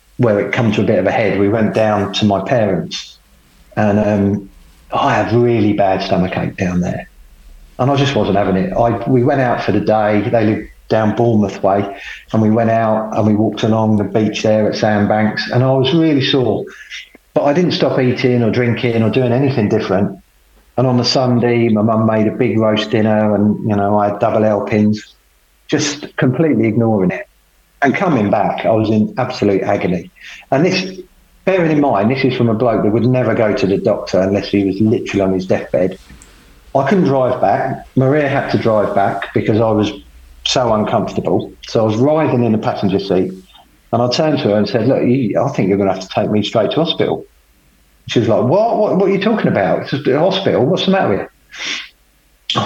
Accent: British